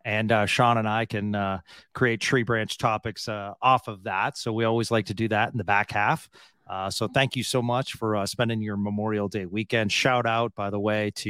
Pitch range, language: 105-130 Hz, English